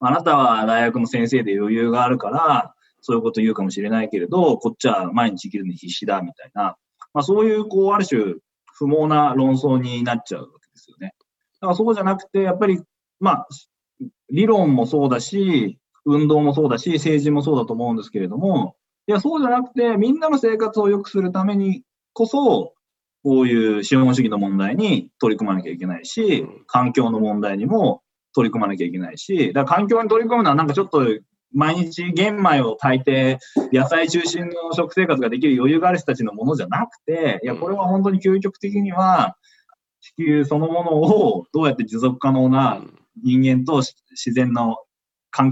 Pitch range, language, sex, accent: 125-195 Hz, Japanese, male, native